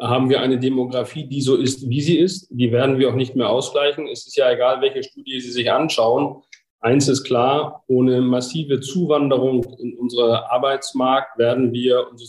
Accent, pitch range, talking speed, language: German, 120-140 Hz, 185 wpm, German